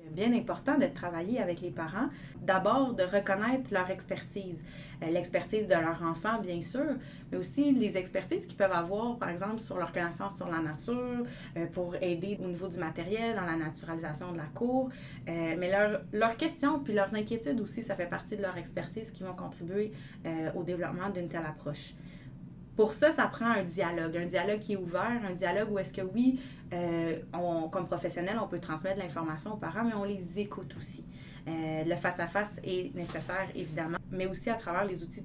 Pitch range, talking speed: 170-205 Hz, 190 wpm